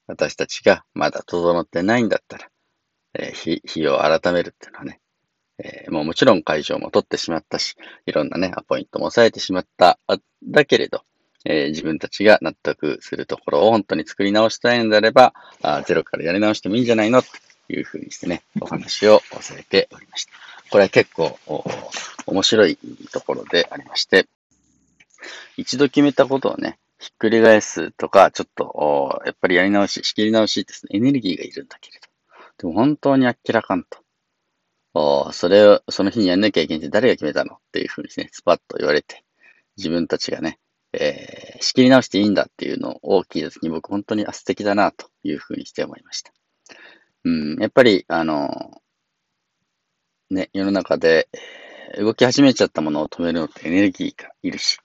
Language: Japanese